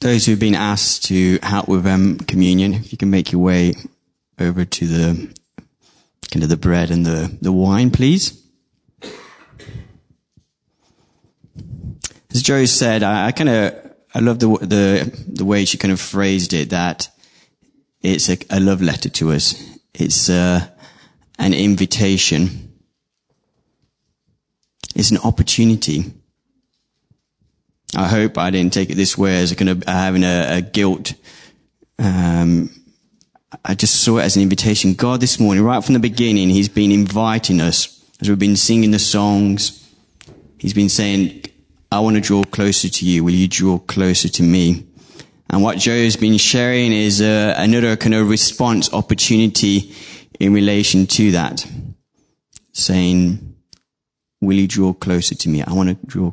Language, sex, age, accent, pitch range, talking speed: English, male, 20-39, British, 90-105 Hz, 155 wpm